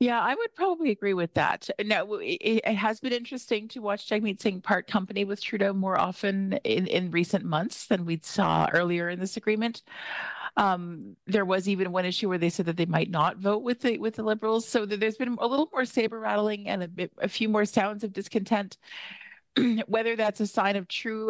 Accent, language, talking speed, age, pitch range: American, English, 210 wpm, 40-59, 165-210 Hz